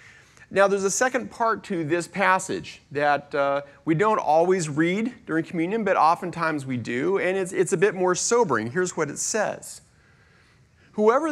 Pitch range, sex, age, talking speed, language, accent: 150-215 Hz, male, 40-59, 170 wpm, English, American